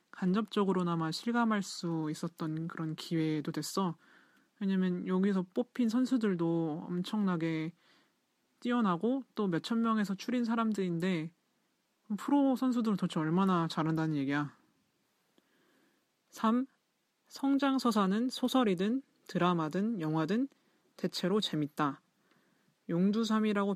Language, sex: Korean, male